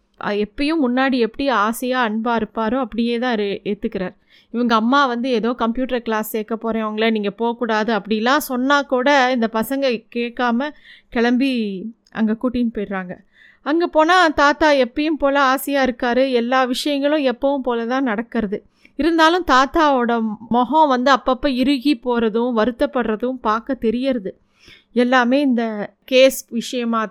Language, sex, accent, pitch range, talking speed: Tamil, female, native, 225-265 Hz, 125 wpm